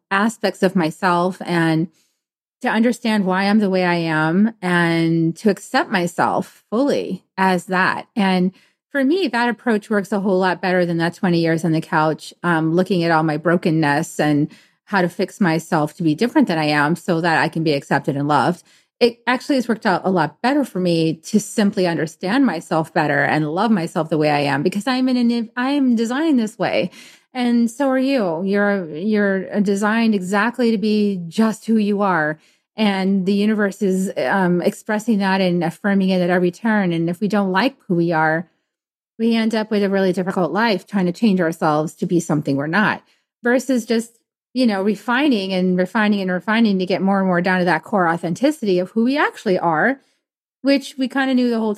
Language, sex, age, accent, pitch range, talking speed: English, female, 30-49, American, 170-230 Hz, 200 wpm